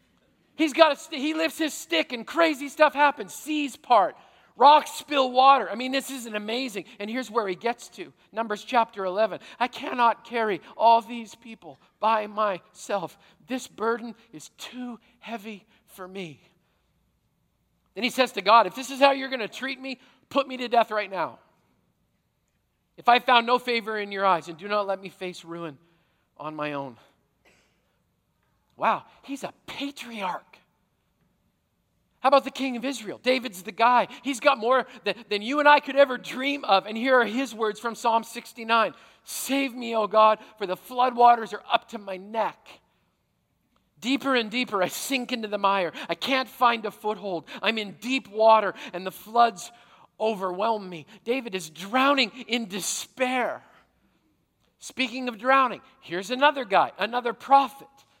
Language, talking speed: English, 170 wpm